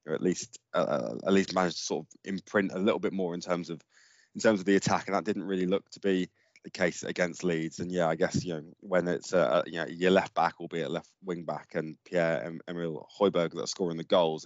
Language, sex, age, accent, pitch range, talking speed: English, male, 20-39, British, 85-105 Hz, 265 wpm